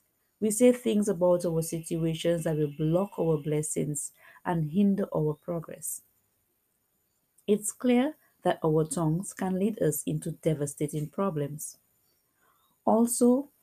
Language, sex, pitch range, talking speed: English, female, 160-210 Hz, 120 wpm